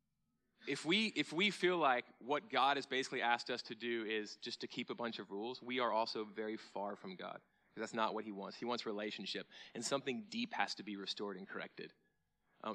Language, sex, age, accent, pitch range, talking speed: English, male, 30-49, American, 115-165 Hz, 225 wpm